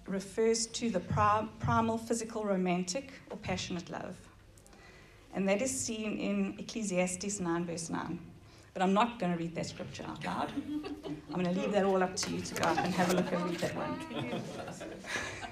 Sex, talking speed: female, 180 wpm